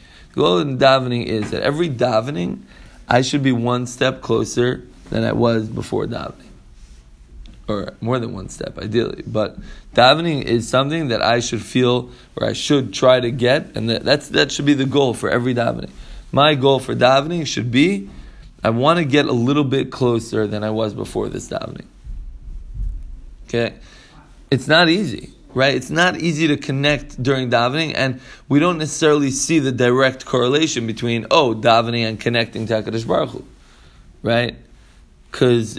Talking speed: 170 wpm